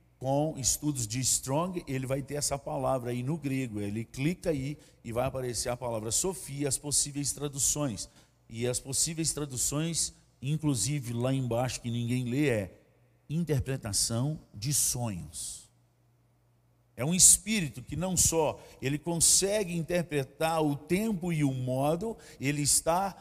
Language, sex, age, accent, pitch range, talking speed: Portuguese, male, 50-69, Brazilian, 120-160 Hz, 140 wpm